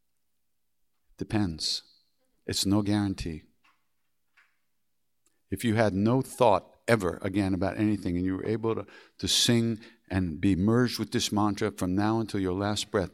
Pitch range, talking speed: 85-125 Hz, 145 wpm